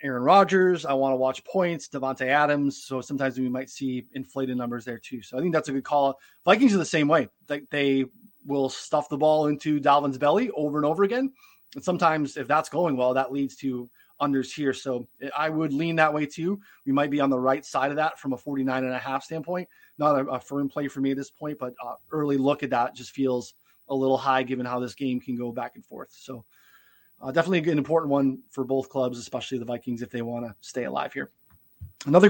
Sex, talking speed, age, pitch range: male, 235 wpm, 20-39, 135-160 Hz